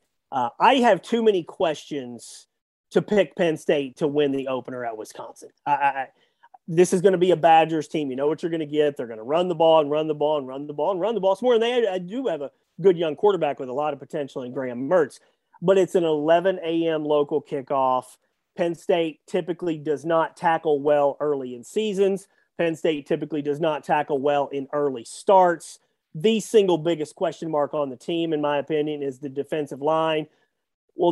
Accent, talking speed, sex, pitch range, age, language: American, 215 wpm, male, 145-185 Hz, 30-49, English